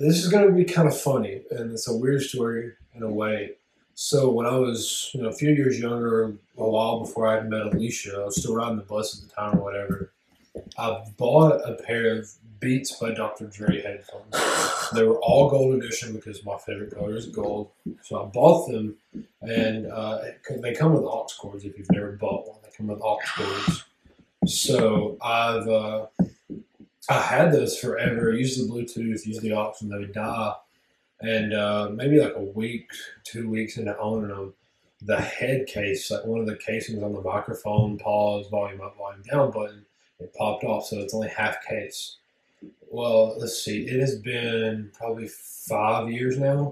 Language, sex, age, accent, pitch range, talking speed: English, male, 20-39, American, 105-120 Hz, 190 wpm